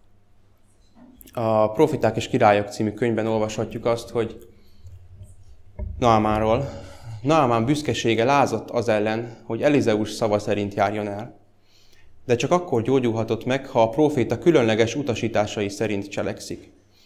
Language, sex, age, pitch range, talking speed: Hungarian, male, 20-39, 100-115 Hz, 115 wpm